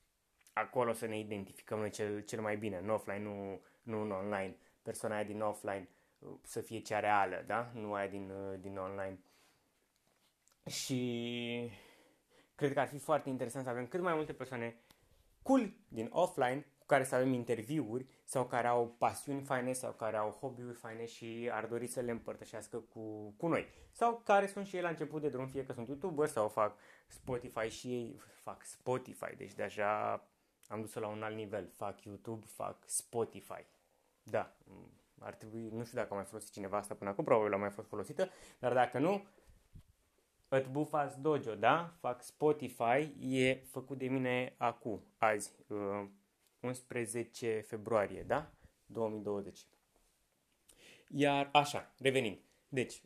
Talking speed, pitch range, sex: 160 wpm, 105-135 Hz, male